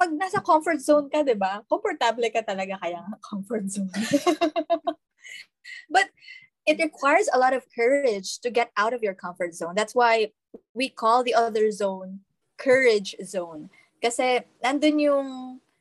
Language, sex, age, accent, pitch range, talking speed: Filipino, female, 20-39, native, 200-260 Hz, 145 wpm